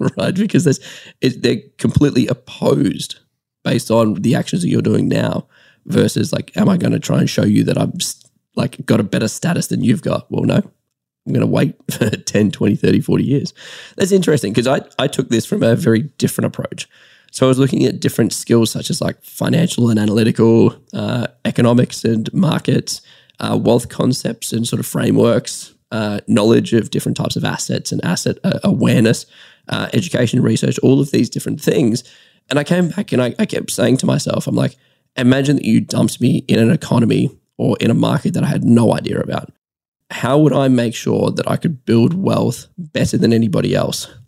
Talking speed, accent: 200 wpm, Australian